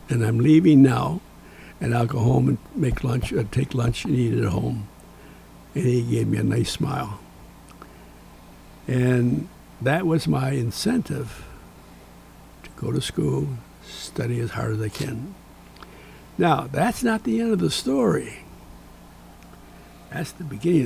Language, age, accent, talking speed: English, 60-79, American, 150 wpm